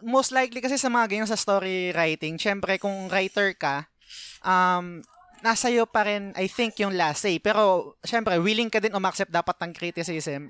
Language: Filipino